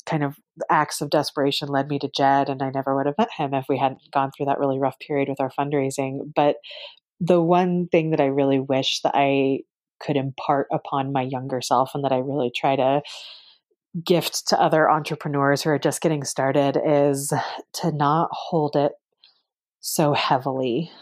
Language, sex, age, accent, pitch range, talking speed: English, female, 30-49, American, 140-160 Hz, 190 wpm